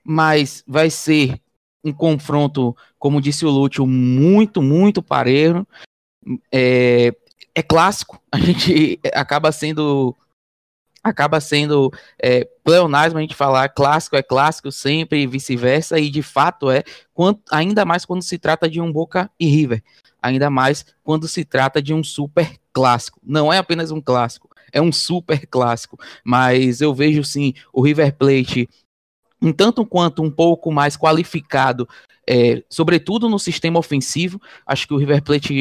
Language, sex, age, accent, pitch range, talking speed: Portuguese, male, 20-39, Brazilian, 135-160 Hz, 150 wpm